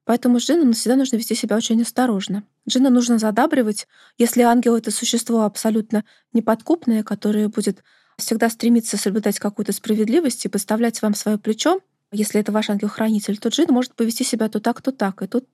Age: 20-39